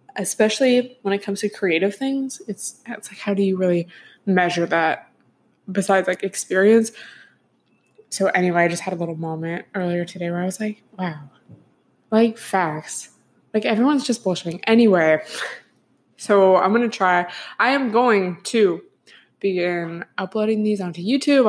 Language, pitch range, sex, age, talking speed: English, 180-225 Hz, female, 20-39, 155 wpm